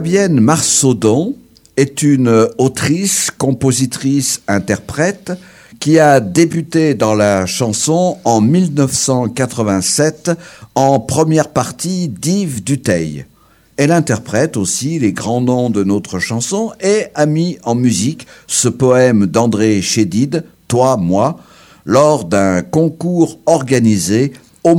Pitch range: 110-160 Hz